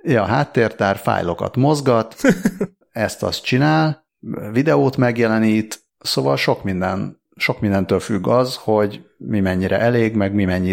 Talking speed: 125 wpm